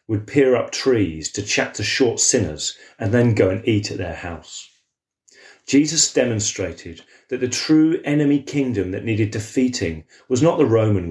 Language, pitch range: English, 100-130 Hz